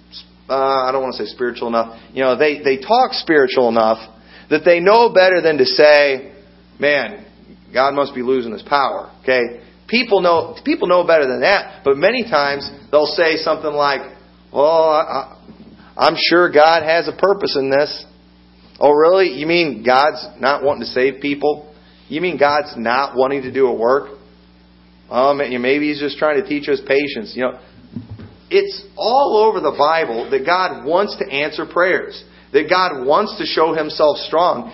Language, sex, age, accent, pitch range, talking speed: English, male, 40-59, American, 120-185 Hz, 180 wpm